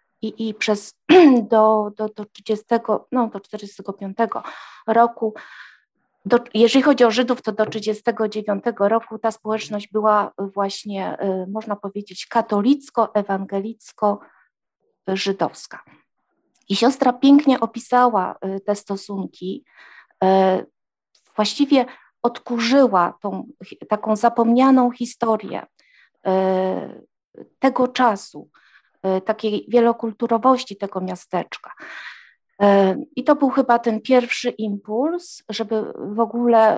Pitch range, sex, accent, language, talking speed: 205-245 Hz, female, native, Polish, 90 wpm